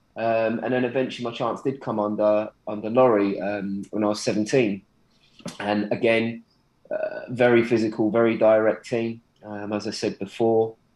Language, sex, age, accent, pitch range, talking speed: English, male, 20-39, British, 105-120 Hz, 160 wpm